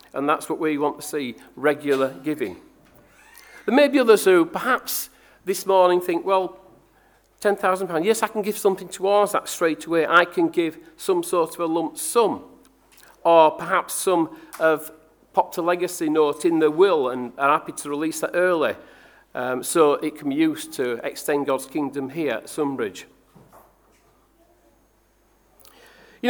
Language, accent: English, British